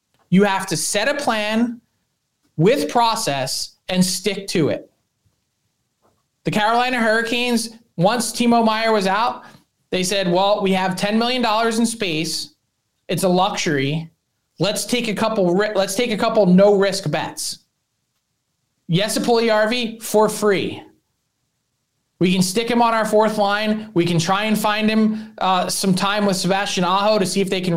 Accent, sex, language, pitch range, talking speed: American, male, English, 170-215 Hz, 160 wpm